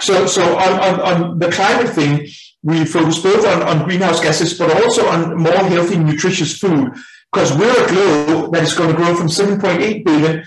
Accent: Danish